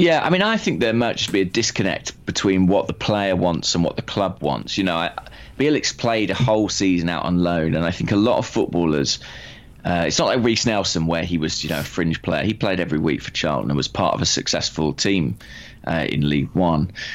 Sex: male